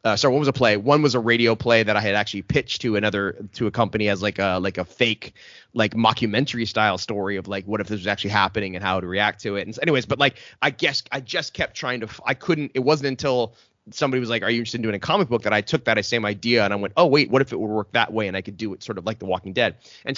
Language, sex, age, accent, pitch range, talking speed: English, male, 30-49, American, 105-125 Hz, 305 wpm